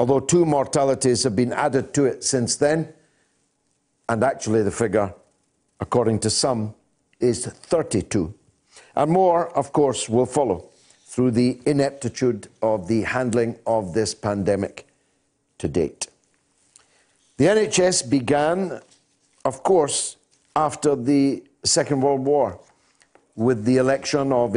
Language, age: English, 60-79